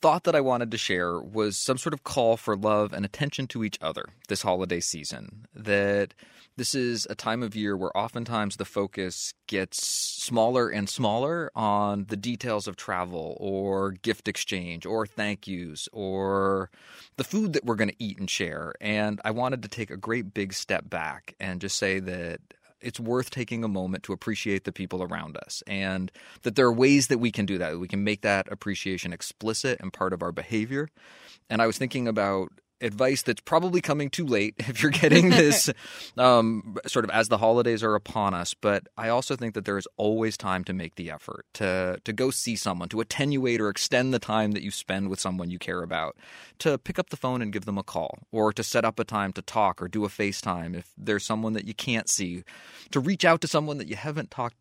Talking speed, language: 220 wpm, English